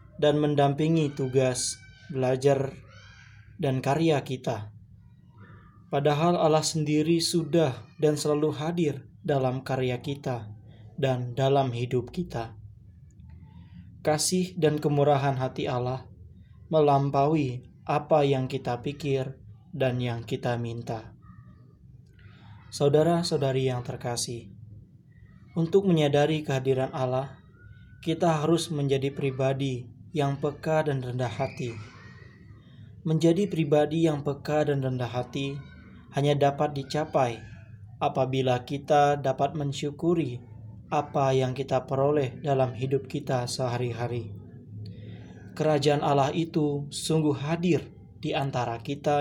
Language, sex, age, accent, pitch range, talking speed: Indonesian, male, 20-39, native, 120-150 Hz, 100 wpm